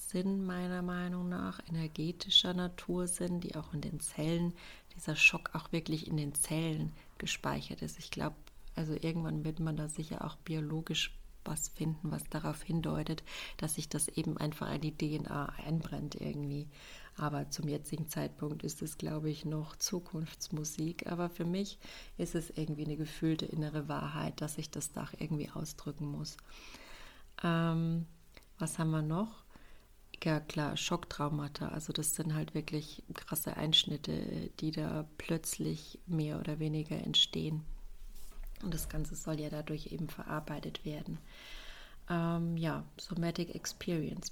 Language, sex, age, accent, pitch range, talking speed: German, female, 30-49, German, 155-175 Hz, 145 wpm